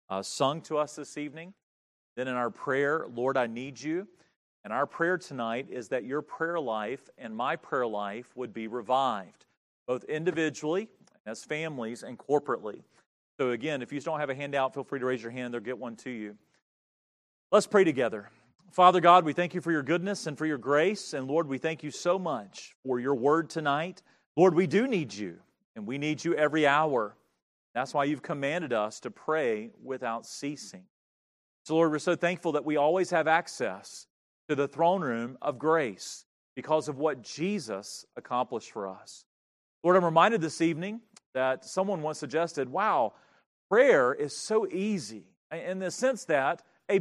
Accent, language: American, English